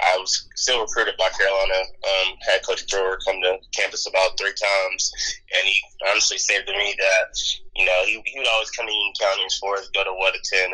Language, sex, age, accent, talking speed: English, male, 20-39, American, 205 wpm